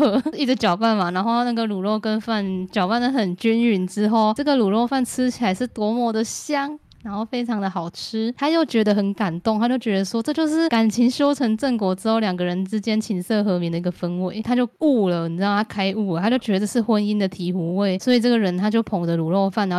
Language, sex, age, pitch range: Chinese, female, 10-29, 185-230 Hz